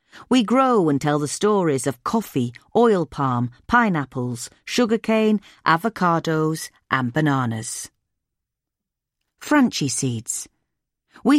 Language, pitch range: English, 135-205 Hz